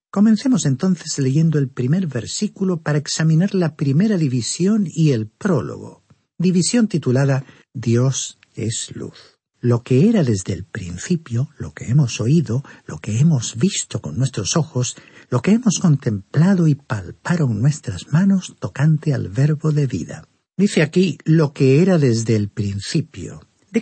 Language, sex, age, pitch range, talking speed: Spanish, male, 50-69, 125-180 Hz, 145 wpm